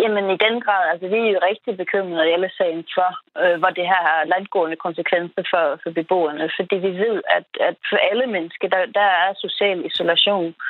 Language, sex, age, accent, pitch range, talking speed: Danish, female, 30-49, native, 170-200 Hz, 200 wpm